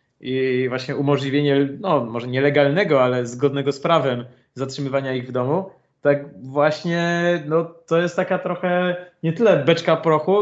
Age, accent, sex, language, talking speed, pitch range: 20-39, native, male, Polish, 140 wpm, 130-160 Hz